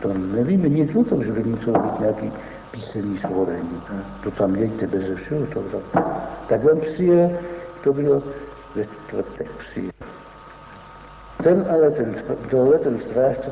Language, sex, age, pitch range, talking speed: Czech, male, 60-79, 115-150 Hz, 135 wpm